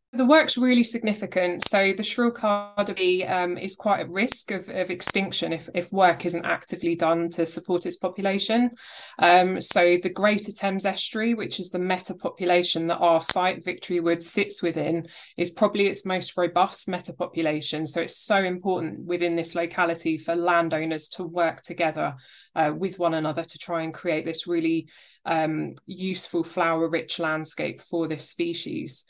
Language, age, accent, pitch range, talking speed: English, 20-39, British, 170-195 Hz, 165 wpm